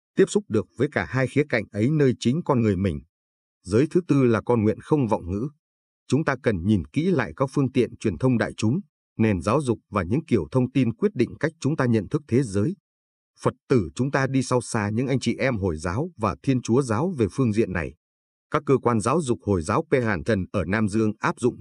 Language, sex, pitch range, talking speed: Vietnamese, male, 105-135 Hz, 245 wpm